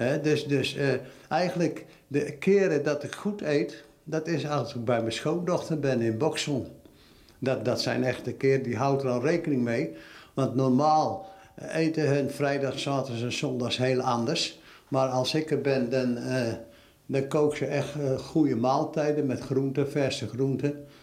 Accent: Dutch